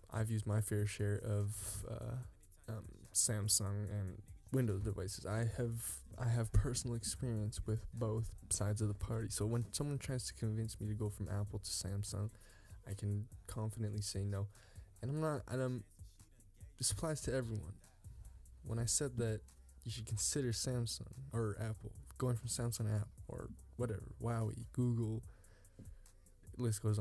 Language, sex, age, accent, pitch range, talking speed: English, male, 10-29, American, 100-120 Hz, 160 wpm